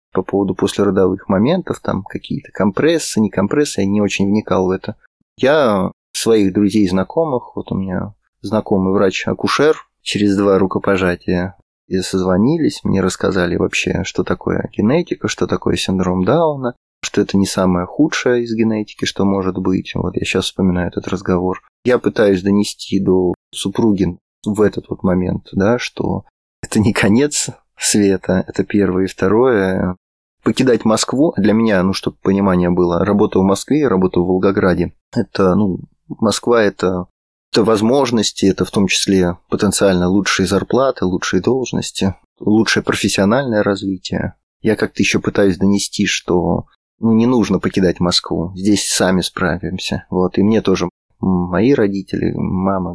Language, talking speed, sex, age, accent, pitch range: Russian, 140 wpm, male, 20-39, native, 90-105 Hz